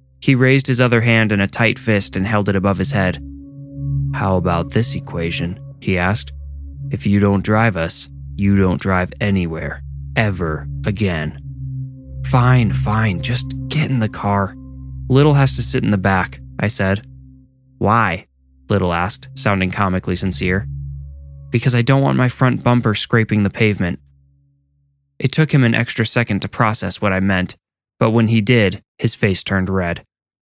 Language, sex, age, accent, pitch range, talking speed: English, male, 20-39, American, 95-115 Hz, 165 wpm